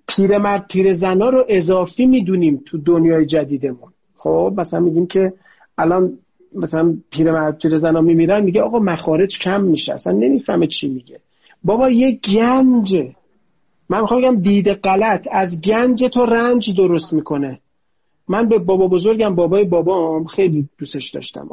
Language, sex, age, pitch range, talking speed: Persian, male, 40-59, 165-225 Hz, 135 wpm